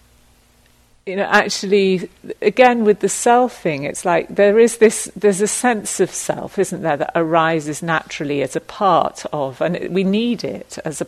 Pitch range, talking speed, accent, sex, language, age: 150-195 Hz, 175 wpm, British, female, English, 50-69